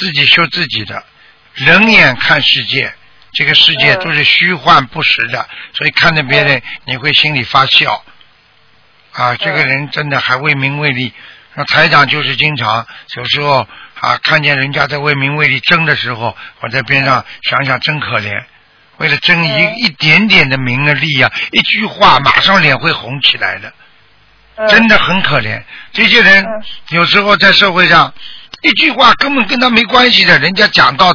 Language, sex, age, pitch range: Chinese, male, 60-79, 145-215 Hz